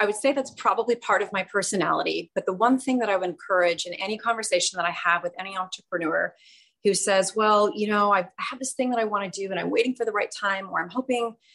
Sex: female